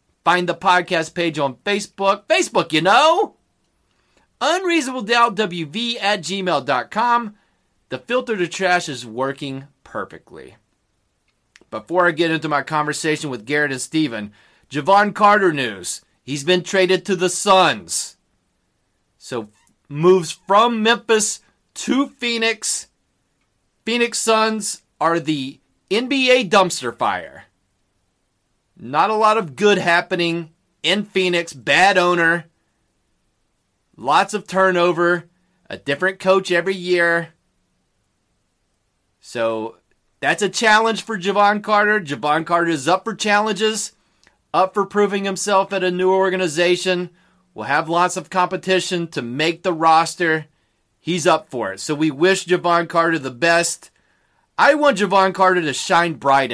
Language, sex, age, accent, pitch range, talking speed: English, male, 30-49, American, 155-205 Hz, 125 wpm